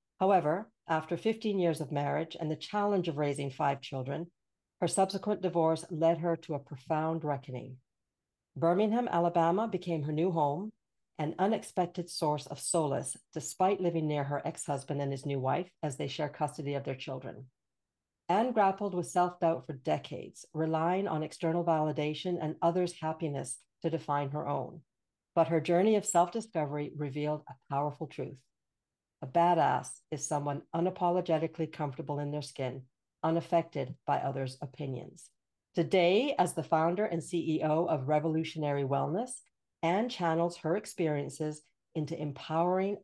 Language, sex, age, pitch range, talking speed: English, female, 50-69, 145-175 Hz, 145 wpm